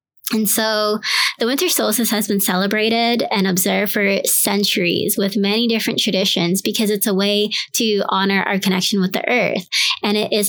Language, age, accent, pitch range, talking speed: English, 20-39, American, 195-230 Hz, 170 wpm